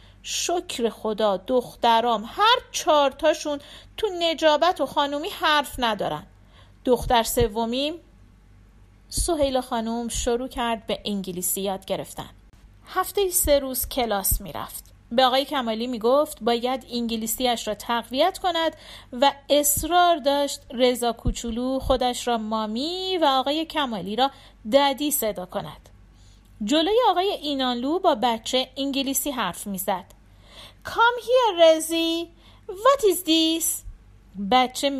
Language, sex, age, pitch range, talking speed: Persian, female, 40-59, 230-300 Hz, 115 wpm